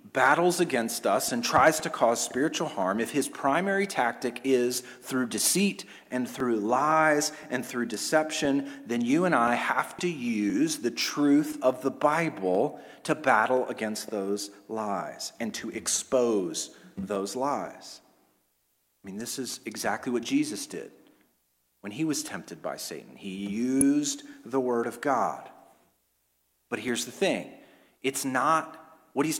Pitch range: 120-160 Hz